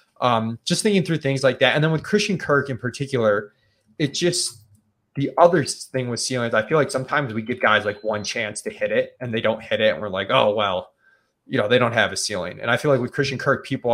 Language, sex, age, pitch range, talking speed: English, male, 20-39, 110-140 Hz, 255 wpm